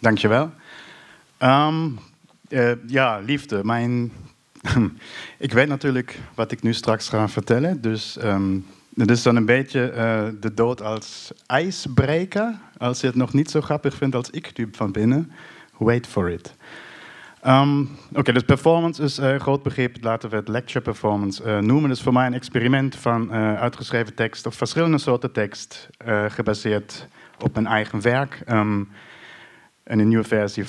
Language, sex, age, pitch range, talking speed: Dutch, male, 50-69, 105-135 Hz, 170 wpm